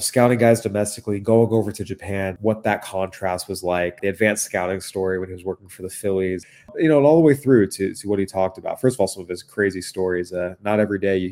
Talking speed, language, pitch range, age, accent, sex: 260 wpm, English, 90-105 Hz, 30-49, American, male